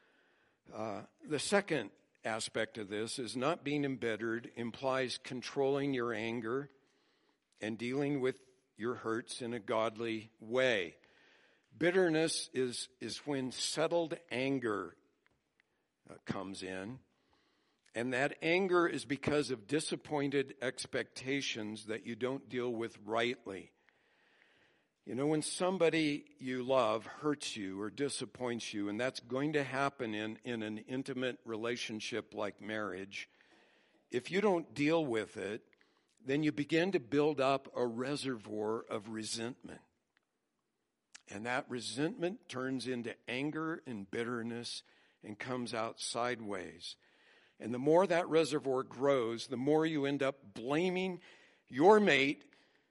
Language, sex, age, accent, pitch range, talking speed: English, male, 60-79, American, 115-145 Hz, 125 wpm